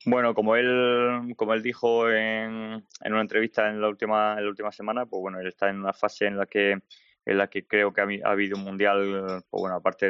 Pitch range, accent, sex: 95-105 Hz, Spanish, male